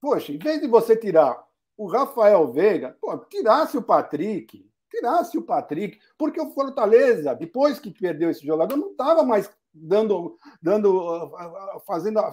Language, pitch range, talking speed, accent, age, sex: Portuguese, 195-310 Hz, 145 wpm, Brazilian, 50-69, male